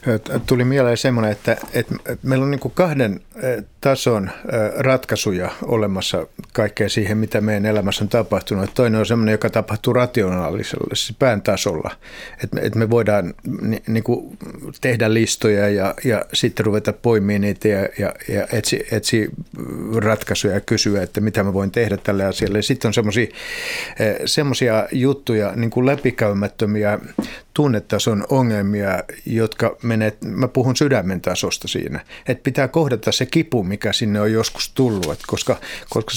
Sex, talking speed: male, 135 wpm